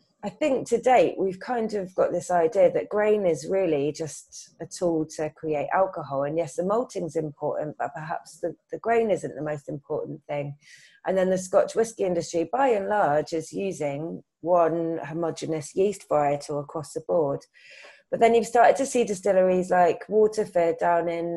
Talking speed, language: 180 wpm, English